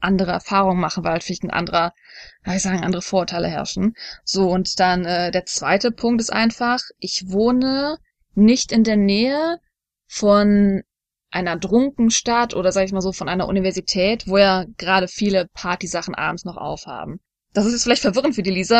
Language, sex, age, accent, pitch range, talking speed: German, female, 20-39, German, 190-235 Hz, 170 wpm